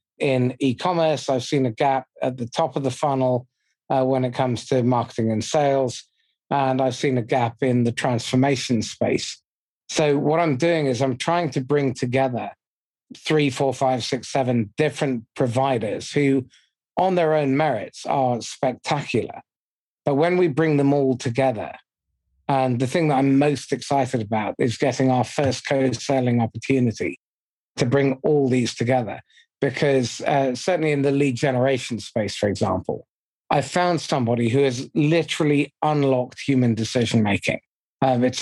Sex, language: male, English